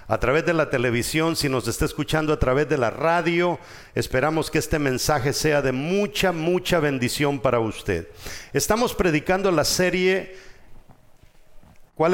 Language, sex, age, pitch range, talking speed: English, male, 50-69, 150-195 Hz, 150 wpm